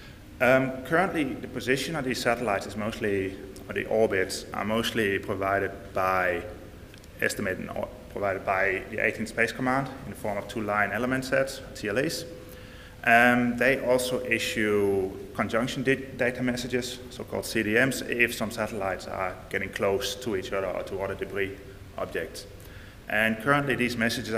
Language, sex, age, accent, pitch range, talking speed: English, male, 30-49, Danish, 100-120 Hz, 155 wpm